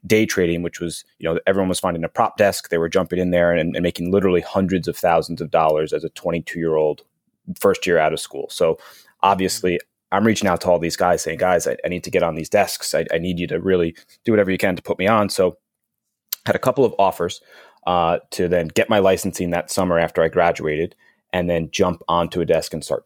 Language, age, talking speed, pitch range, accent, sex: English, 30-49, 245 wpm, 85-100 Hz, American, male